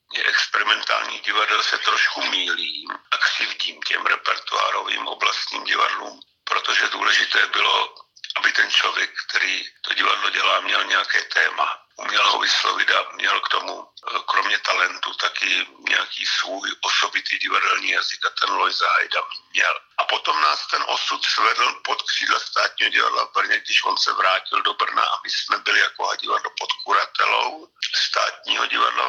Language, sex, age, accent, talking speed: Czech, male, 60-79, native, 145 wpm